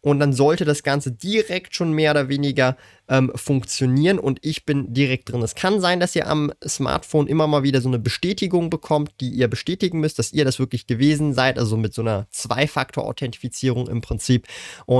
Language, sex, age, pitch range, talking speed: German, male, 20-39, 130-165 Hz, 195 wpm